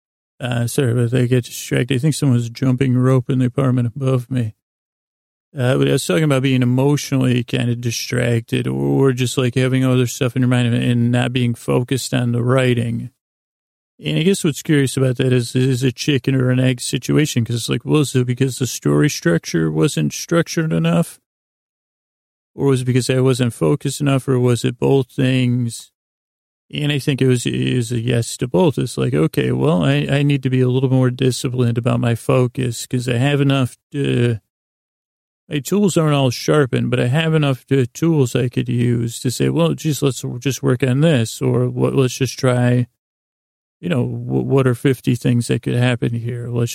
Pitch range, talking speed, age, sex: 120-135 Hz, 200 wpm, 40-59, male